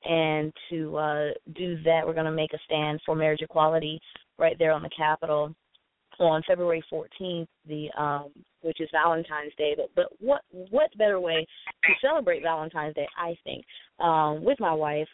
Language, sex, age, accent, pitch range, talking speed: English, female, 20-39, American, 155-175 Hz, 170 wpm